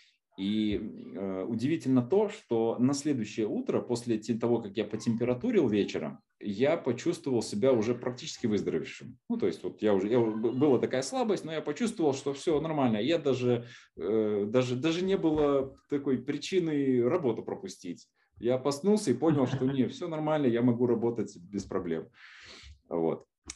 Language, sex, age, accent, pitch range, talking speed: Russian, male, 20-39, native, 110-145 Hz, 155 wpm